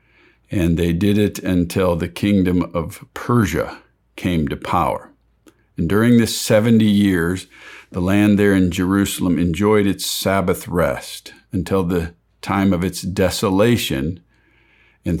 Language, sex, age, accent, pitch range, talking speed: English, male, 50-69, American, 90-110 Hz, 130 wpm